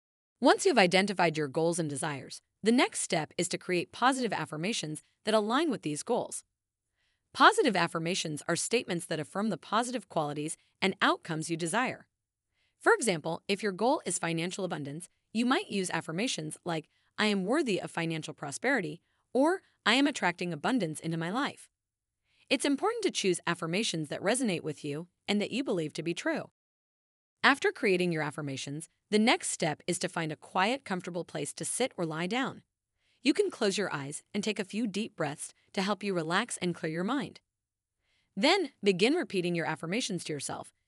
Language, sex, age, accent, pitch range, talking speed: English, female, 30-49, American, 155-230 Hz, 180 wpm